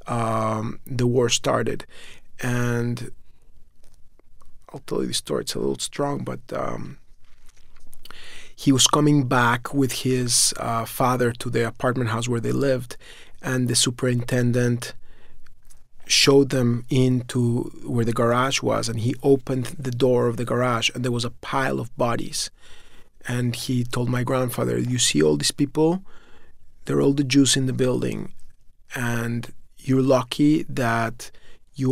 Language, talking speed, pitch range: English, 145 wpm, 115-130 Hz